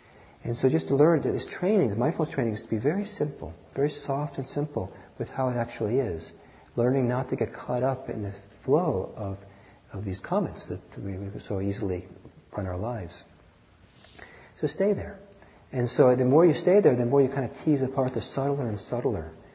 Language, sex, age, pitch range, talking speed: English, male, 40-59, 100-135 Hz, 205 wpm